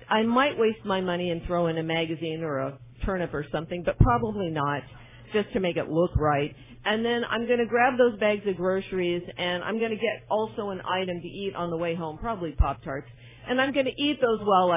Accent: American